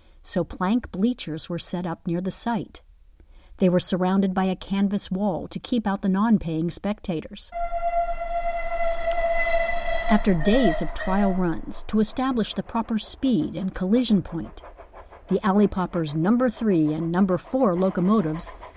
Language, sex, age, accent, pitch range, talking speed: English, female, 50-69, American, 170-220 Hz, 145 wpm